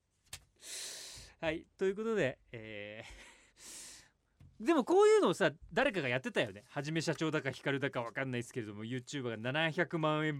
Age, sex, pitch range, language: 40-59, male, 115-175 Hz, Japanese